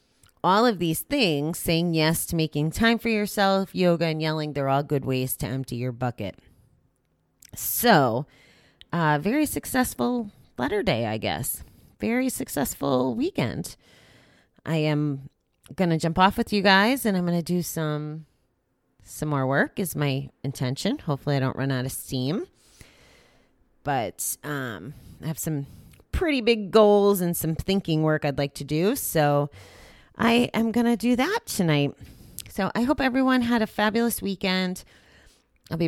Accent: American